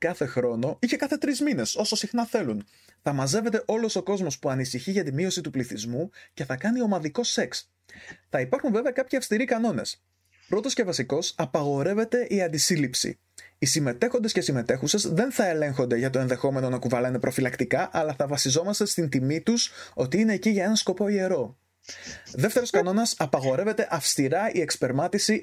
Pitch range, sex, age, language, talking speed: 150-225 Hz, male, 20-39, Greek, 170 wpm